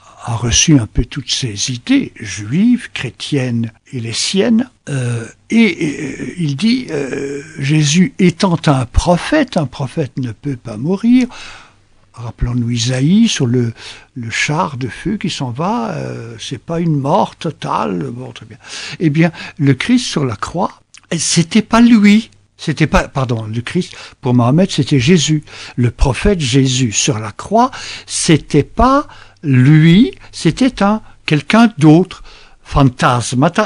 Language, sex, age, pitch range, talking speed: French, male, 60-79, 125-185 Hz, 150 wpm